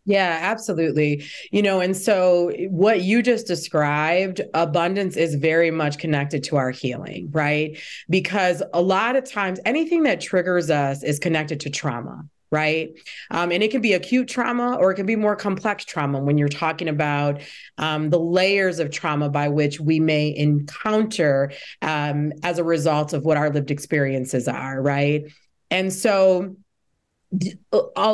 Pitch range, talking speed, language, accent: 150-190 Hz, 160 wpm, English, American